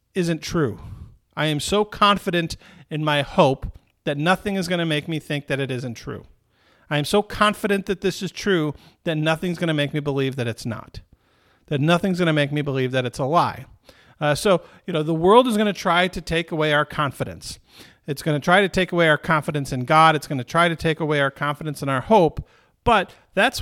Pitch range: 145-185 Hz